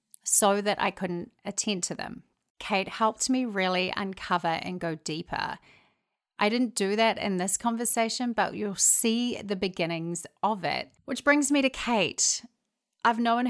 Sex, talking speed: female, 160 wpm